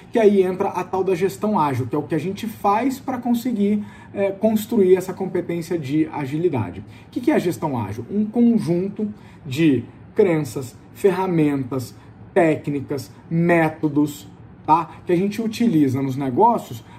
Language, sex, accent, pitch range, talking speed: Portuguese, male, Brazilian, 130-190 Hz, 150 wpm